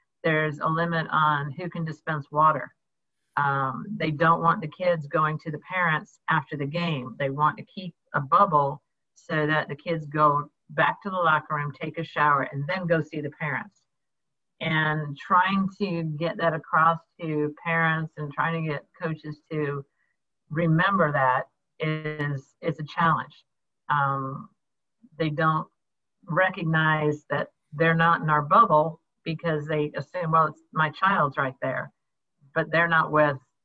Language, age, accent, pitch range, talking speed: English, 50-69, American, 150-170 Hz, 160 wpm